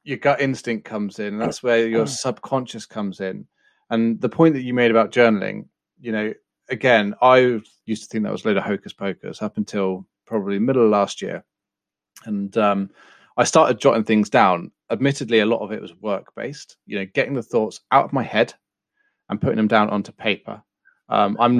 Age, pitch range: 30-49, 105-125 Hz